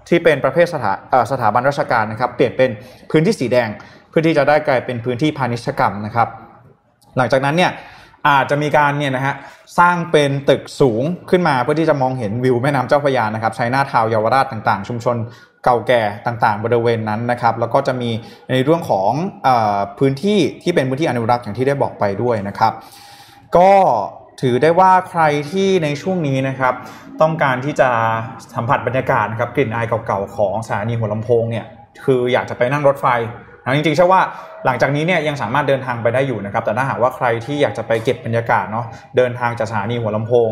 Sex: male